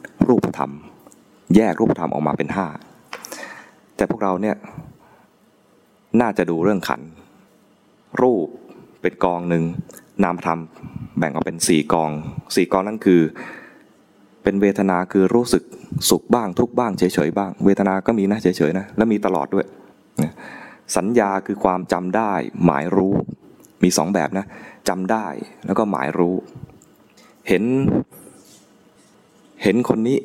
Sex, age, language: male, 20-39, English